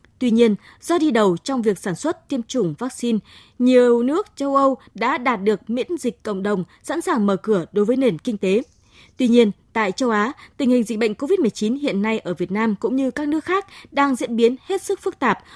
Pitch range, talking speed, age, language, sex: 215-280 Hz, 230 wpm, 20-39, Vietnamese, female